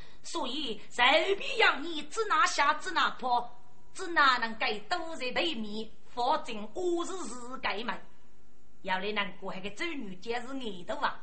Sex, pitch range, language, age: female, 220-345 Hz, Chinese, 30-49